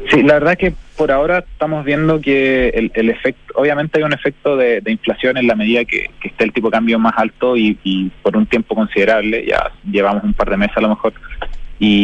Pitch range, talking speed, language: 110-135 Hz, 240 wpm, Spanish